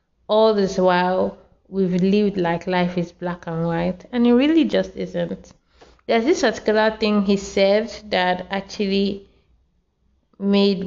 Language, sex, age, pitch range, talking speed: English, female, 20-39, 185-210 Hz, 140 wpm